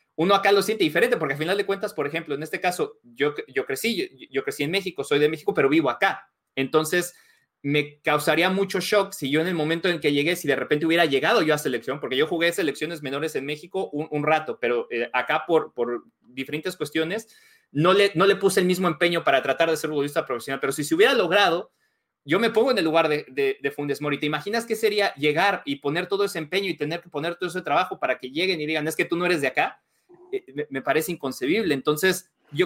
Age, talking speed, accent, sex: 30-49, 240 wpm, Mexican, male